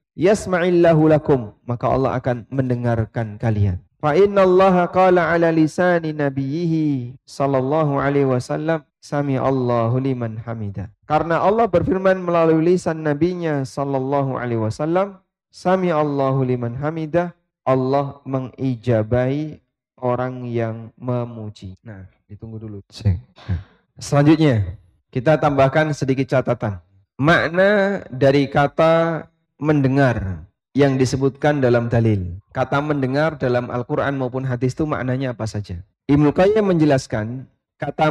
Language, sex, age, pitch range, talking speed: Indonesian, male, 20-39, 120-155 Hz, 100 wpm